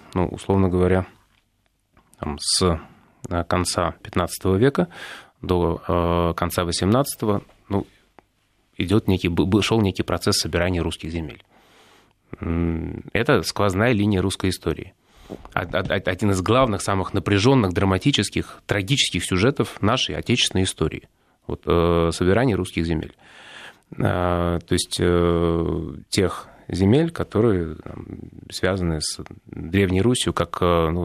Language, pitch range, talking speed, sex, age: Russian, 85-100 Hz, 95 wpm, male, 30-49